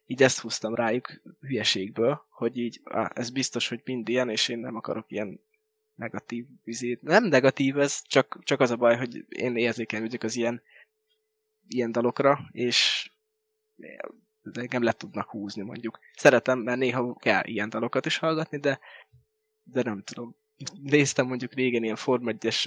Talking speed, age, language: 155 wpm, 20-39, Hungarian